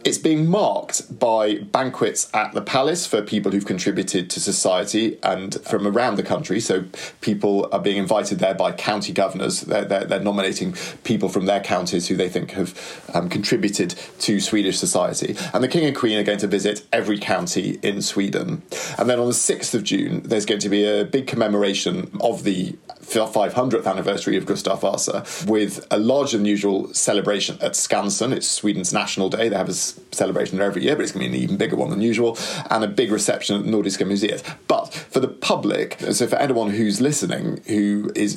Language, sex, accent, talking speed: English, male, British, 200 wpm